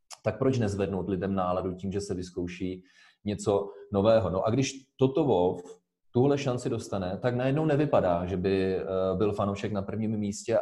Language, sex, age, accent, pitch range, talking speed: Czech, male, 30-49, native, 100-125 Hz, 165 wpm